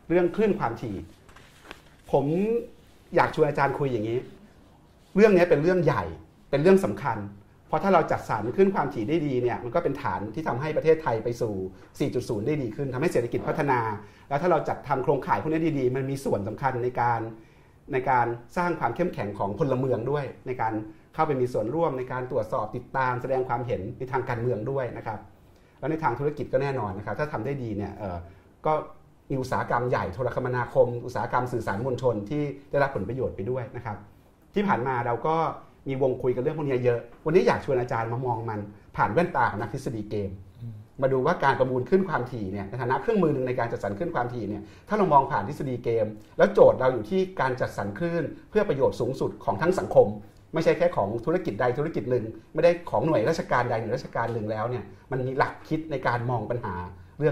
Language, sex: Thai, male